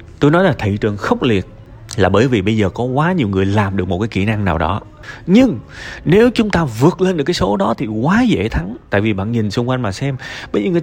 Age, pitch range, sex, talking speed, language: 20-39, 100-140 Hz, male, 270 wpm, Vietnamese